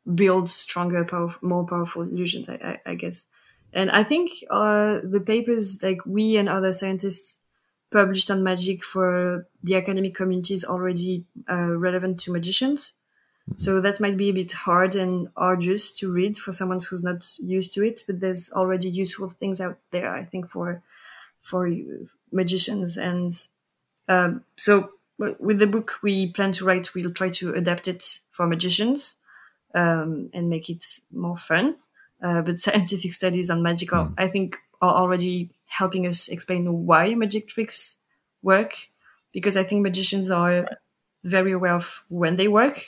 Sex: female